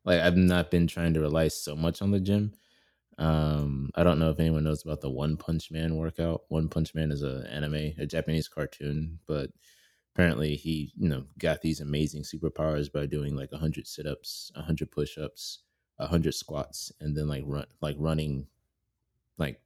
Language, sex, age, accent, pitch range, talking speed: English, male, 20-39, American, 75-85 Hz, 180 wpm